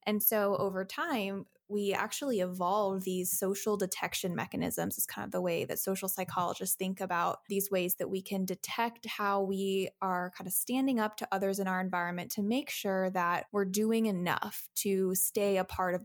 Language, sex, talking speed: English, female, 190 wpm